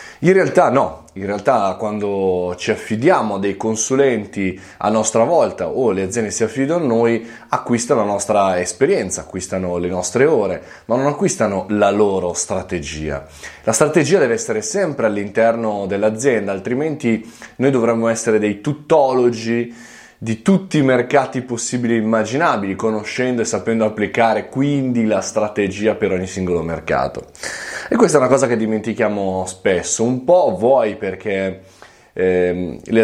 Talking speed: 145 wpm